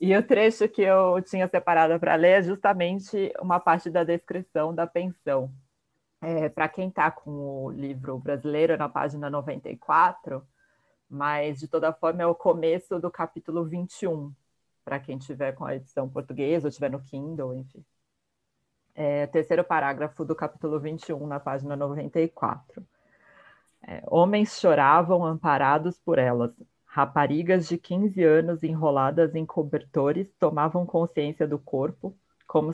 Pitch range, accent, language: 145-170 Hz, Brazilian, Portuguese